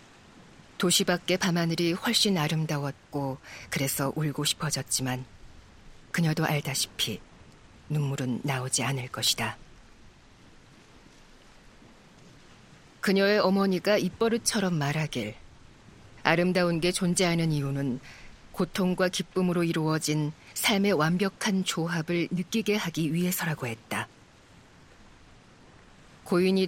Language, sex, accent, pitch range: Korean, female, native, 135-185 Hz